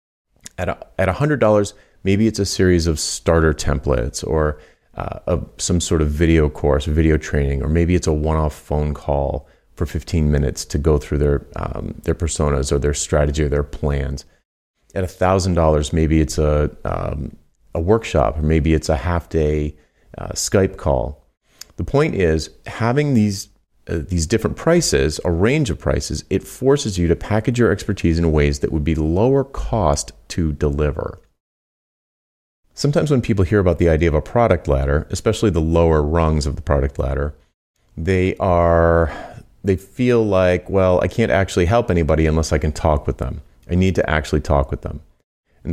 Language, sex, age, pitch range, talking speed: English, male, 30-49, 75-95 Hz, 175 wpm